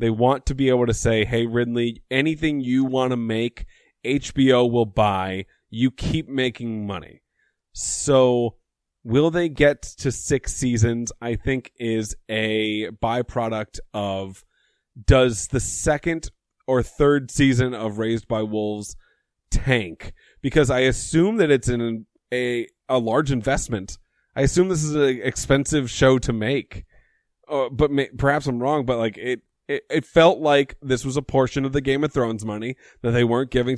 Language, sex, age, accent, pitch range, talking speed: English, male, 30-49, American, 110-130 Hz, 160 wpm